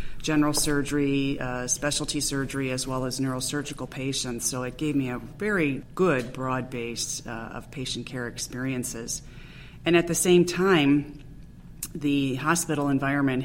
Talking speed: 145 wpm